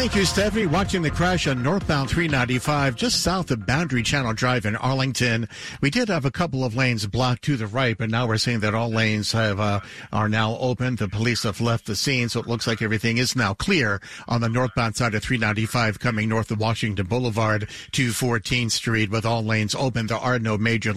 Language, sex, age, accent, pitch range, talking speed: English, male, 50-69, American, 110-130 Hz, 215 wpm